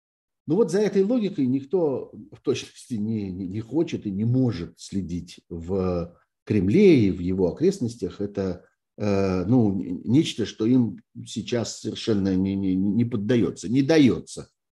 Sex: male